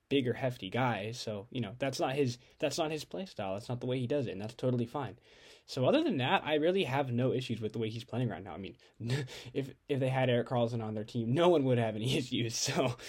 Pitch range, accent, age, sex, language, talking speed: 115-155 Hz, American, 10-29, male, English, 275 wpm